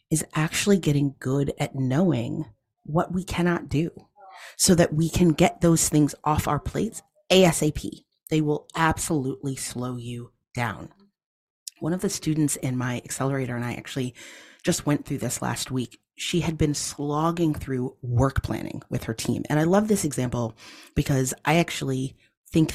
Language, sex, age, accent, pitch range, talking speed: English, female, 30-49, American, 125-170 Hz, 165 wpm